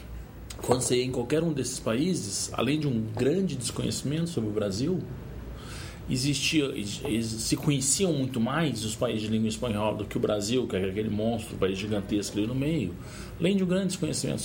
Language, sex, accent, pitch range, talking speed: Portuguese, male, Brazilian, 105-160 Hz, 180 wpm